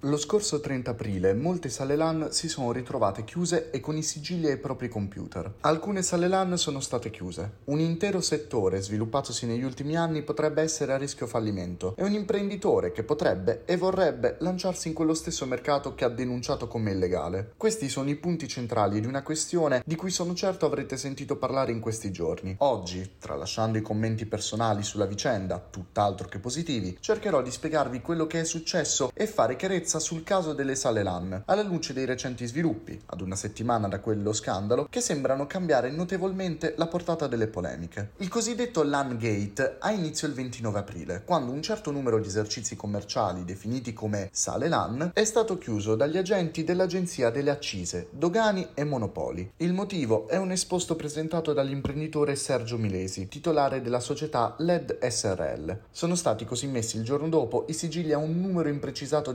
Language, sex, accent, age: Italian, male, native, 30-49